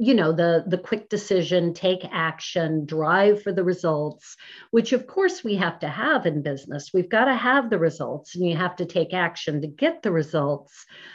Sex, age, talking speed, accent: female, 50-69, 200 wpm, American